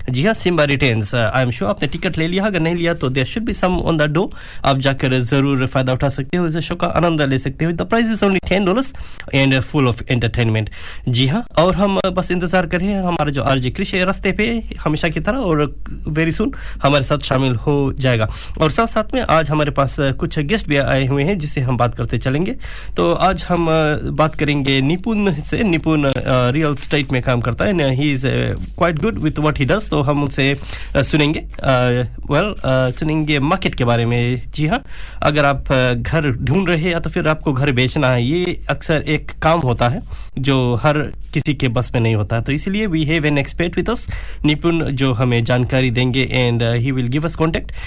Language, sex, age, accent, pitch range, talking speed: Hindi, male, 20-39, native, 130-170 Hz, 170 wpm